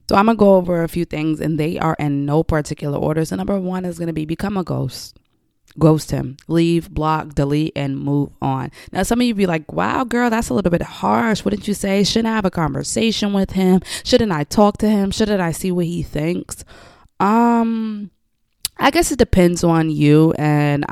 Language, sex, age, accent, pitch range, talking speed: English, female, 20-39, American, 135-175 Hz, 210 wpm